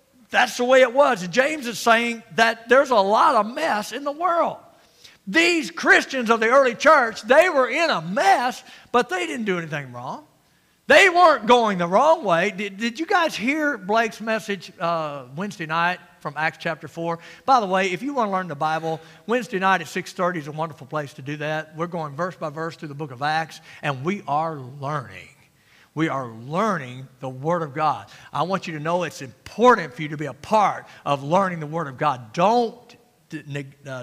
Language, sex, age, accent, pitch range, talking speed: English, male, 50-69, American, 160-230 Hz, 205 wpm